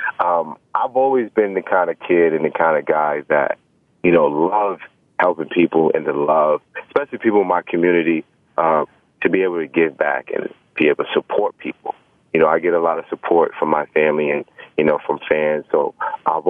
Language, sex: English, male